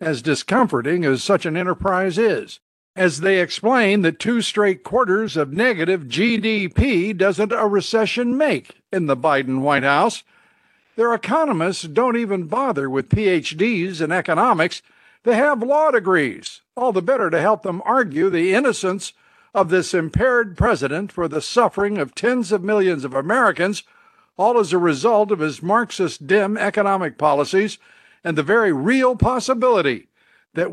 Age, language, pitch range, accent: 60-79, English, 175-235 Hz, American